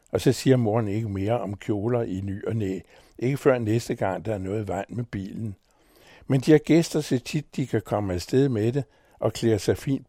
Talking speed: 230 wpm